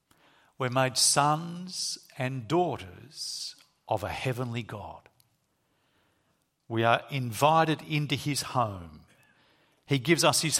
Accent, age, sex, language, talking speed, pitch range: Australian, 50-69, male, English, 110 wpm, 110-140 Hz